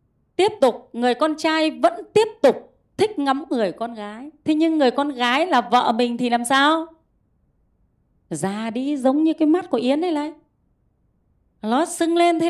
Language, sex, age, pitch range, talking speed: Vietnamese, female, 20-39, 210-320 Hz, 180 wpm